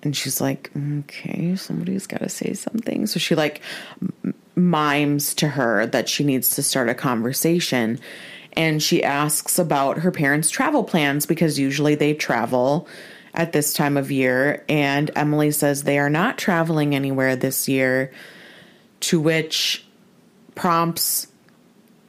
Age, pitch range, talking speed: 30-49, 145-180 Hz, 140 wpm